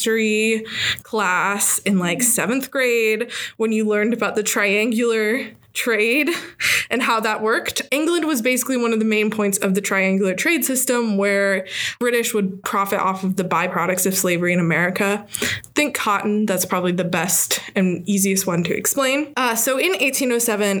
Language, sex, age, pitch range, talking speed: English, female, 20-39, 190-240 Hz, 165 wpm